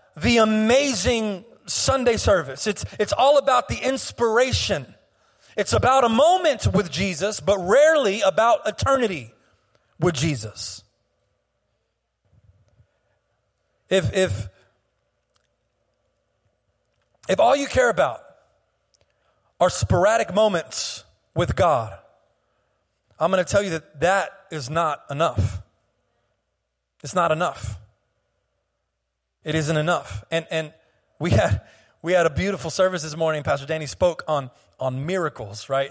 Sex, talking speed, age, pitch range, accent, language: male, 110 wpm, 40-59, 135-215 Hz, American, English